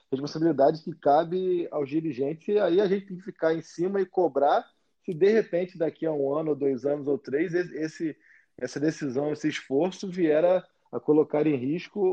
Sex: male